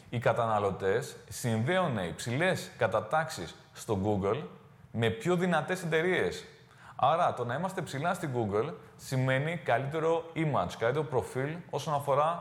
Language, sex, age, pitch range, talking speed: Greek, male, 20-39, 115-160 Hz, 120 wpm